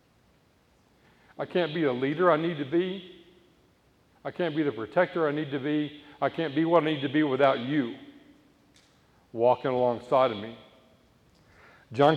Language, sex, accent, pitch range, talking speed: English, male, American, 125-155 Hz, 165 wpm